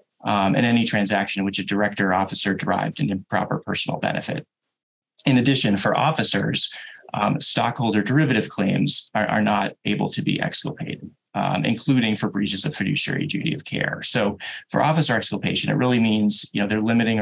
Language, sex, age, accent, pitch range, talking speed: English, male, 30-49, American, 100-120 Hz, 165 wpm